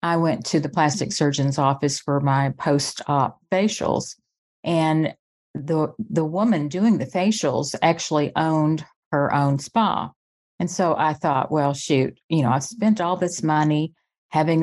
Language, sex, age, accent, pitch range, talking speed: English, female, 50-69, American, 145-175 Hz, 155 wpm